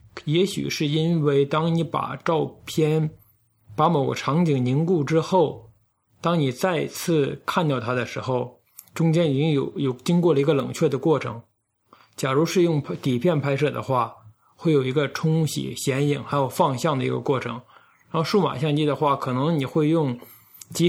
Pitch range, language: 130-165 Hz, Chinese